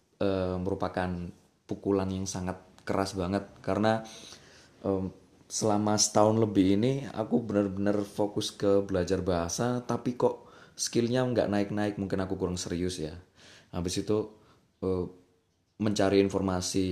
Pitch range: 95-120 Hz